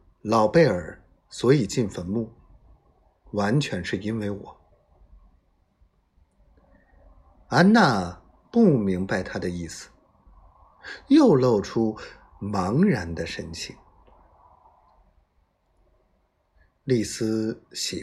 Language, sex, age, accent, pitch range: Chinese, male, 50-69, native, 80-110 Hz